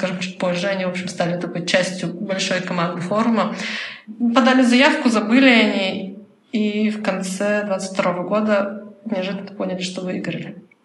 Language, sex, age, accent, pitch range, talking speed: Russian, female, 20-39, native, 185-215 Hz, 145 wpm